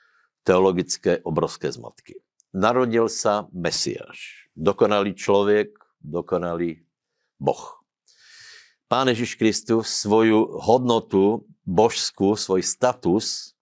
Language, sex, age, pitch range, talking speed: Slovak, male, 60-79, 85-110 Hz, 80 wpm